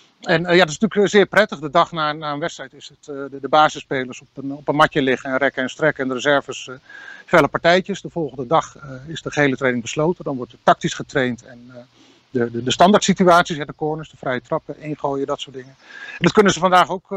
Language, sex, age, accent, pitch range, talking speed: Dutch, male, 50-69, Dutch, 135-170 Hz, 255 wpm